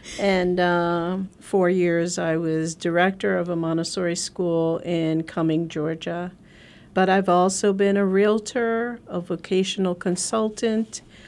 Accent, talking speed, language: American, 120 wpm, English